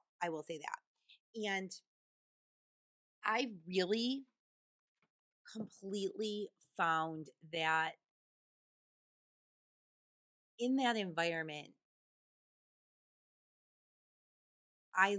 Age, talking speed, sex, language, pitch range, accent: 30-49, 55 wpm, female, English, 160-195 Hz, American